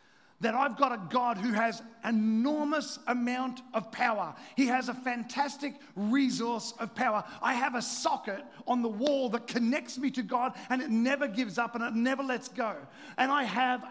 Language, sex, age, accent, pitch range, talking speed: English, male, 40-59, Australian, 225-265 Hz, 190 wpm